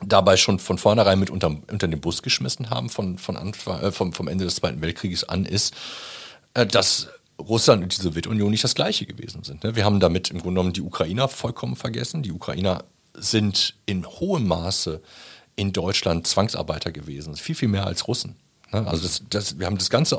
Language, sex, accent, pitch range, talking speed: German, male, German, 85-110 Hz, 185 wpm